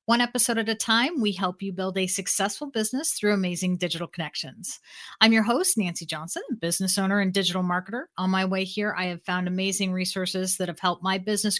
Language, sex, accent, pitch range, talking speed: English, female, American, 180-230 Hz, 205 wpm